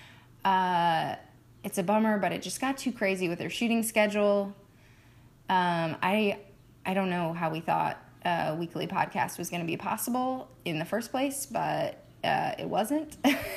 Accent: American